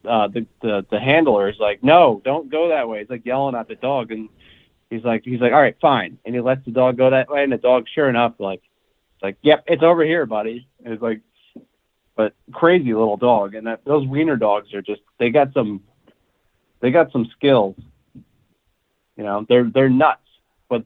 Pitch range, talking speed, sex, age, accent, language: 105-130 Hz, 205 wpm, male, 40-59, American, English